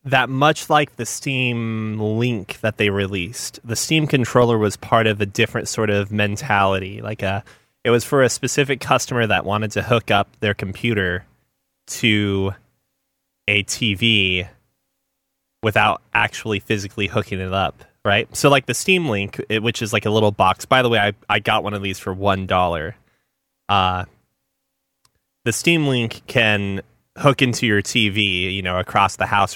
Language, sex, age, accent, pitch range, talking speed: English, male, 20-39, American, 95-115 Hz, 165 wpm